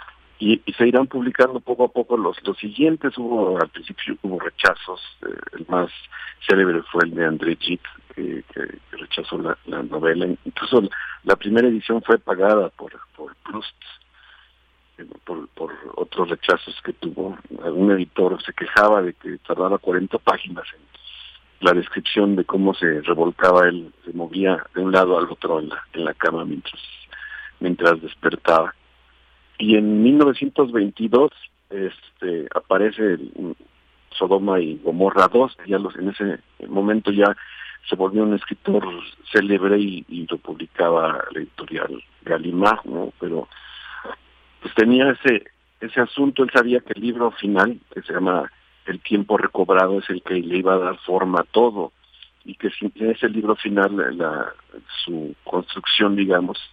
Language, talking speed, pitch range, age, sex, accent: Spanish, 160 wpm, 90-115 Hz, 50-69, male, Mexican